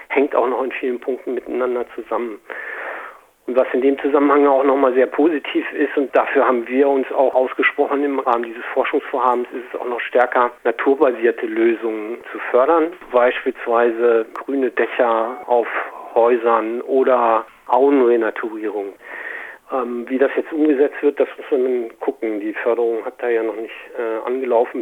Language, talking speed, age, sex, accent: Spanish, 155 wpm, 40-59, male, German